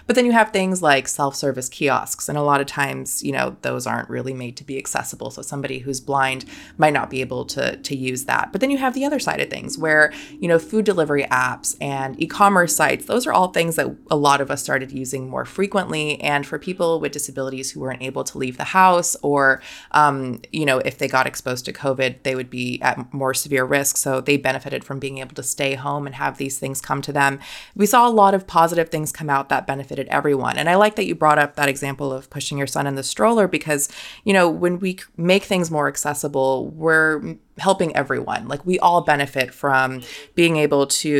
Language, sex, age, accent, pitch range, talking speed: English, female, 20-39, American, 135-165 Hz, 230 wpm